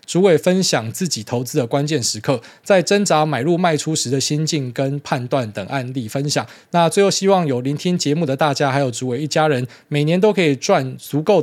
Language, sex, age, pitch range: Chinese, male, 20-39, 110-150 Hz